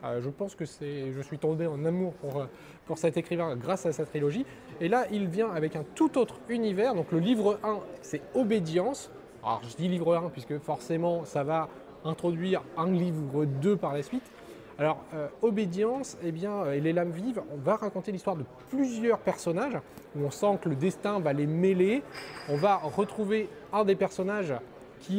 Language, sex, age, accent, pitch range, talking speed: French, male, 20-39, French, 145-195 Hz, 195 wpm